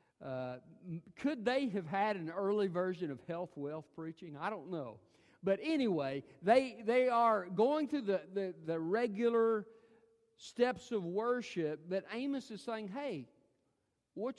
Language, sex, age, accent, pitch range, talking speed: English, male, 50-69, American, 170-225 Hz, 145 wpm